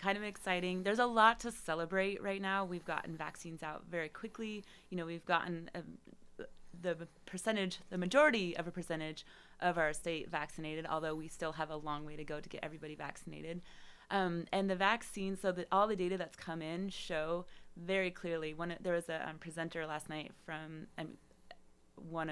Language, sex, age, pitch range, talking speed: English, female, 20-39, 155-185 Hz, 190 wpm